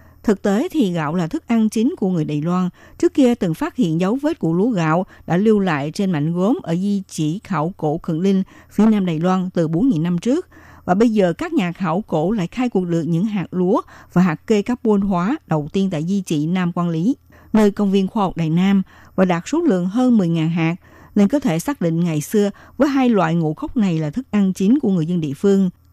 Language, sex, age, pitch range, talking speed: Vietnamese, female, 60-79, 170-225 Hz, 245 wpm